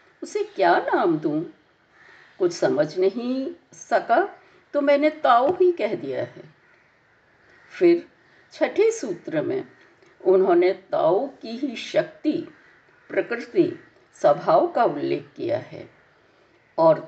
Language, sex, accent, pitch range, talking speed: Hindi, female, native, 280-345 Hz, 110 wpm